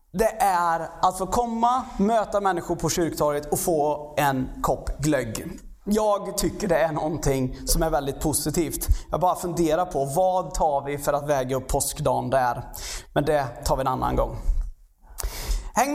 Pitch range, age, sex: 150-240 Hz, 30-49, male